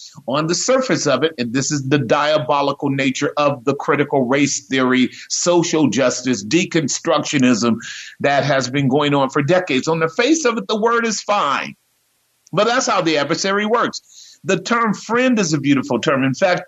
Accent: American